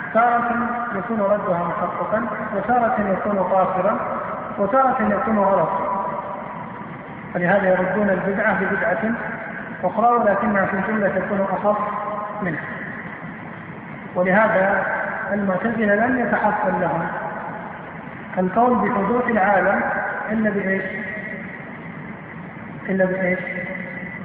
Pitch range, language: 190-225 Hz, Arabic